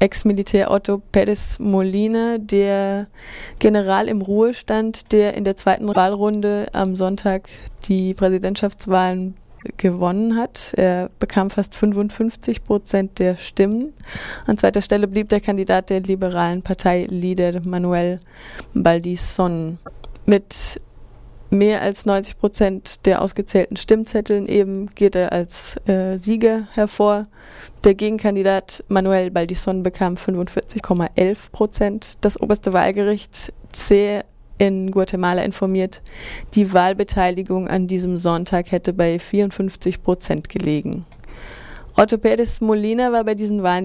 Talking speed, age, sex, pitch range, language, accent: 115 wpm, 20-39, female, 185-210 Hz, German, German